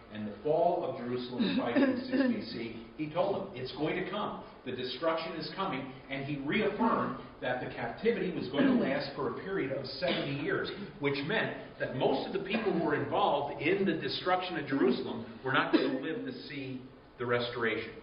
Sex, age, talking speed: male, 50-69, 195 wpm